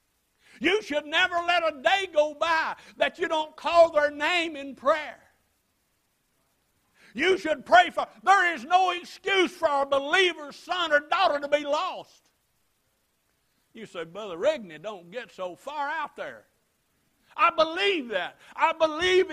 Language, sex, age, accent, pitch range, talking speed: English, male, 60-79, American, 245-330 Hz, 150 wpm